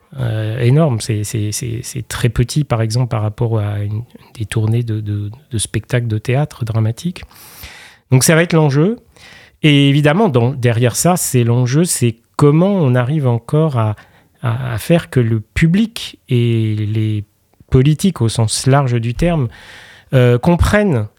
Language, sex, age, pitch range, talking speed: French, male, 30-49, 115-150 Hz, 160 wpm